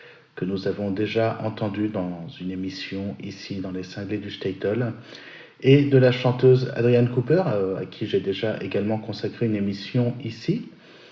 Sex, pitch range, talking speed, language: male, 105-130 Hz, 155 wpm, French